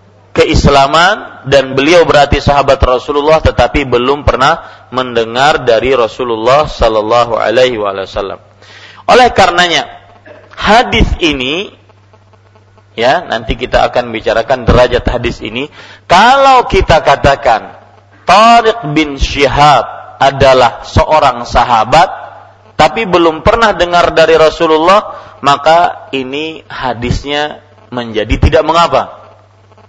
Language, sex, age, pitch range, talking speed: Malay, male, 40-59, 110-160 Hz, 100 wpm